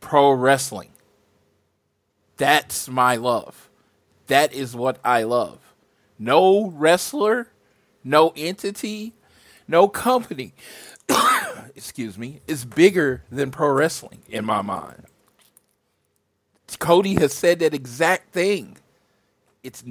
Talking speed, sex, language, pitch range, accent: 100 wpm, male, English, 115-170 Hz, American